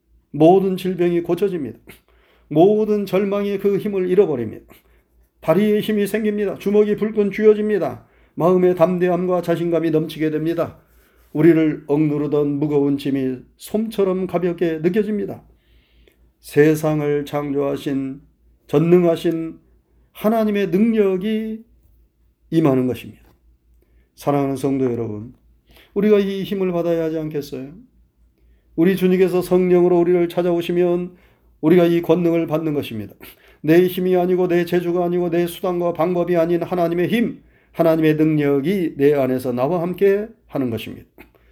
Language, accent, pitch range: Korean, native, 130-180 Hz